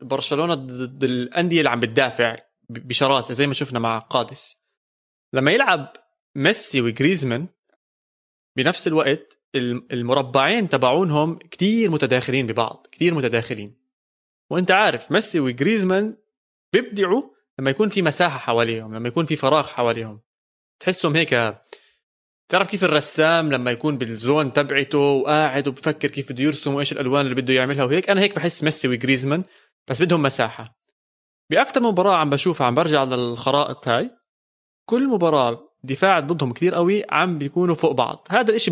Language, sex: Arabic, male